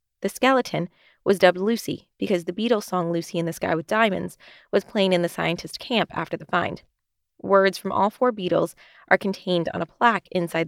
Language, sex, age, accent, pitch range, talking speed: English, female, 20-39, American, 180-225 Hz, 195 wpm